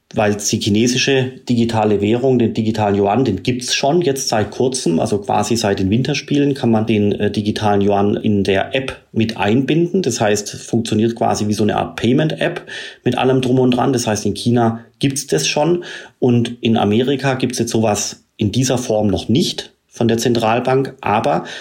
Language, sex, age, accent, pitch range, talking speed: German, male, 30-49, German, 105-125 Hz, 190 wpm